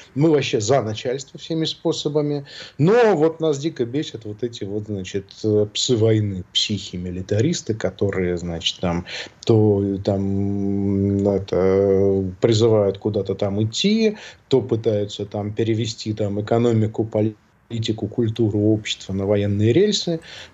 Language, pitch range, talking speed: Russian, 105-140 Hz, 120 wpm